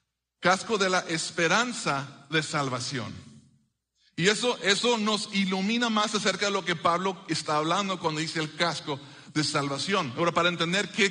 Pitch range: 160-195 Hz